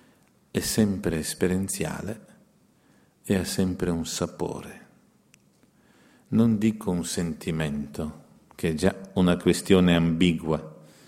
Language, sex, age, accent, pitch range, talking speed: Italian, male, 50-69, native, 85-100 Hz, 95 wpm